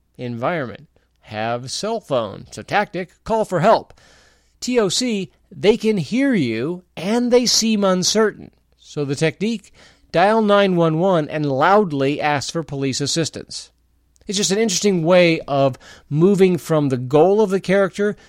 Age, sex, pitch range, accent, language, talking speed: 40-59, male, 135-190 Hz, American, English, 140 wpm